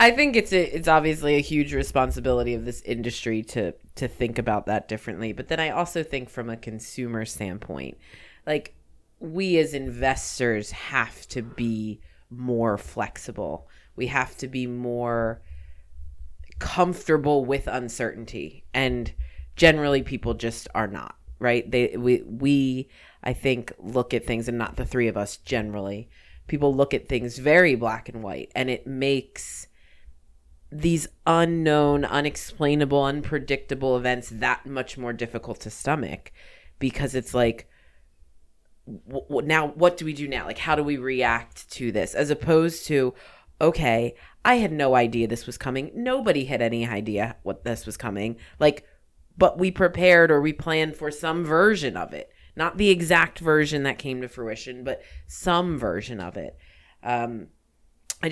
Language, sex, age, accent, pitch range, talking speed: English, female, 30-49, American, 110-150 Hz, 155 wpm